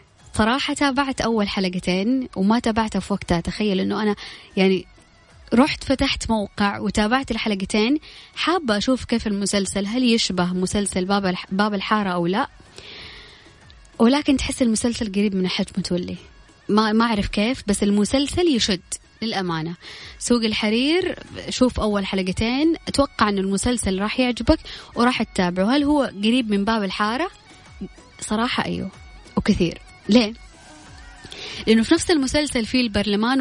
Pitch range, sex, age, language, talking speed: 195-245 Hz, female, 20-39, Arabic, 130 wpm